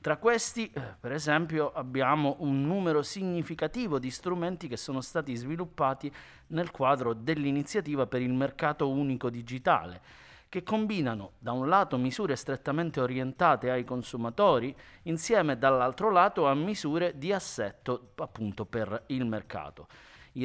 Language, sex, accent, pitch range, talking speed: Italian, male, native, 125-165 Hz, 130 wpm